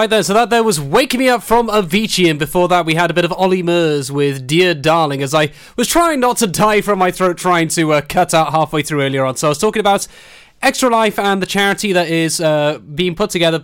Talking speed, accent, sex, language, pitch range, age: 260 wpm, British, male, English, 155-205 Hz, 20-39